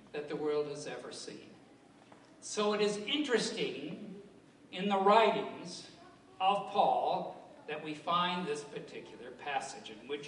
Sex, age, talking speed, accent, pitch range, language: male, 60-79, 135 wpm, American, 150-200 Hz, English